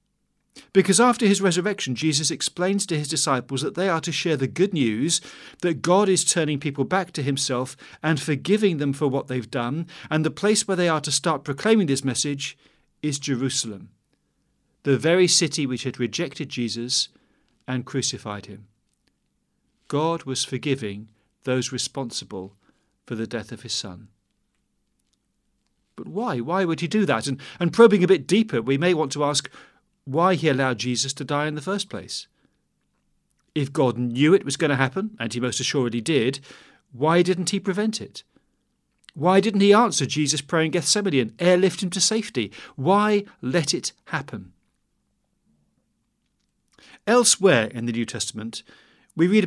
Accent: British